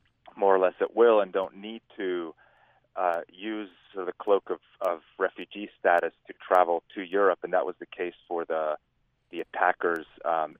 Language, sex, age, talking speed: English, male, 30-49, 185 wpm